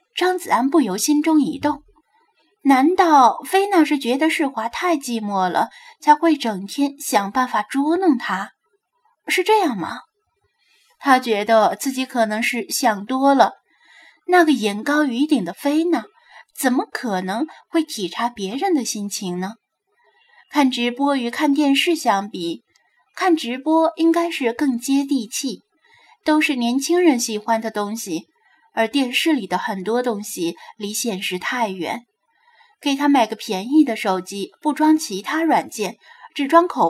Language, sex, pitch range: Chinese, female, 215-325 Hz